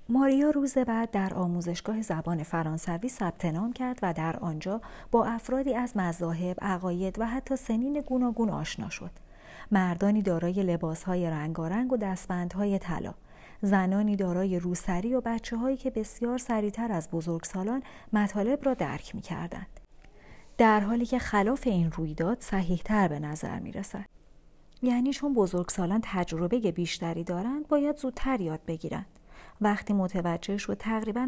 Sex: female